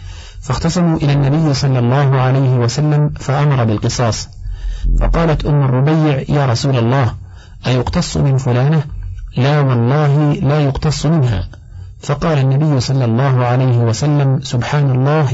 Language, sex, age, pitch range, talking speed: Arabic, male, 50-69, 115-145 Hz, 120 wpm